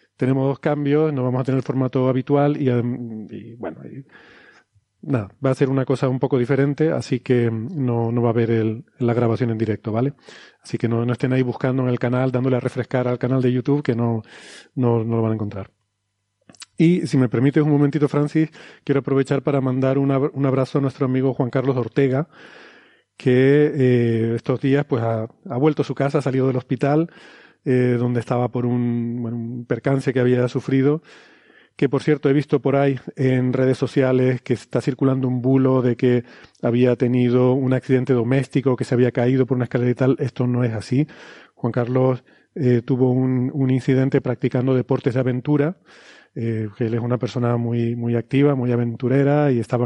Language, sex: Spanish, male